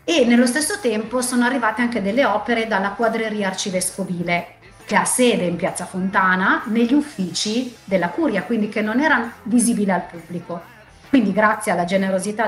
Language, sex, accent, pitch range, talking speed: Italian, female, native, 190-245 Hz, 160 wpm